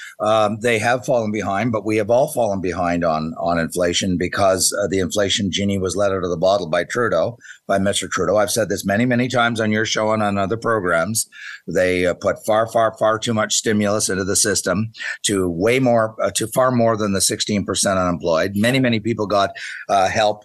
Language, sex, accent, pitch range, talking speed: English, male, American, 95-115 Hz, 215 wpm